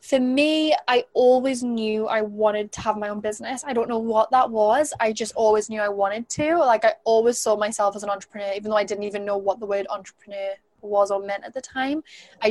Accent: British